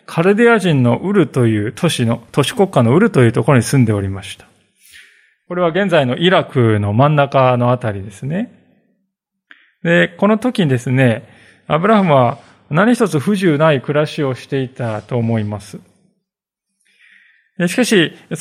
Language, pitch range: Japanese, 120-185 Hz